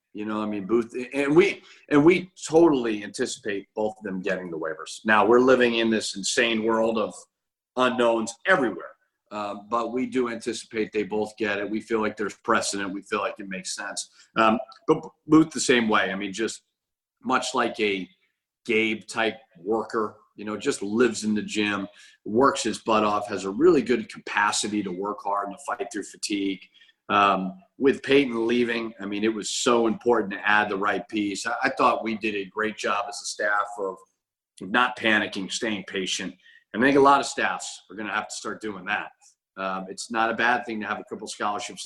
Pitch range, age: 100-120 Hz, 40-59